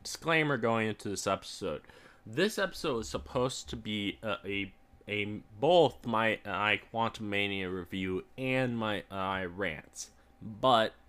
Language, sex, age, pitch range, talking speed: English, male, 20-39, 100-120 Hz, 145 wpm